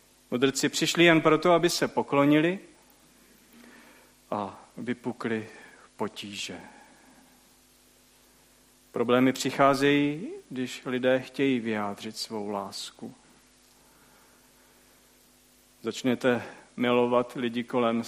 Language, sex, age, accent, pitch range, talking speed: Czech, male, 40-59, native, 120-135 Hz, 75 wpm